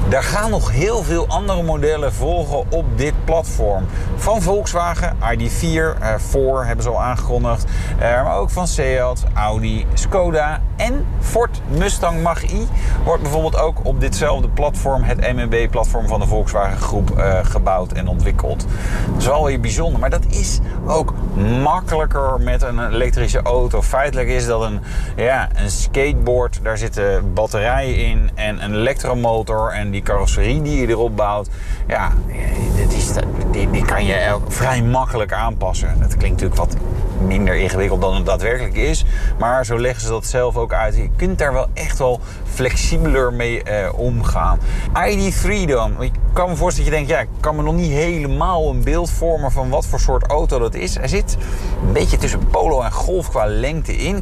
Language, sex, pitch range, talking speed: Dutch, male, 100-130 Hz, 170 wpm